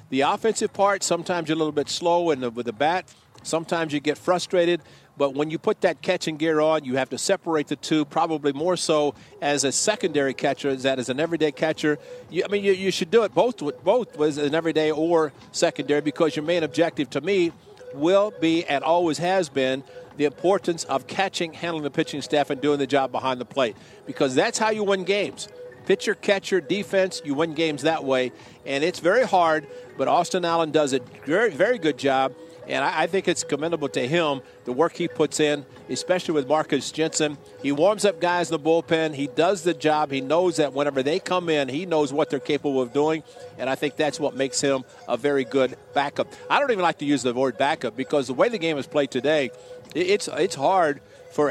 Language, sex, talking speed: English, male, 220 wpm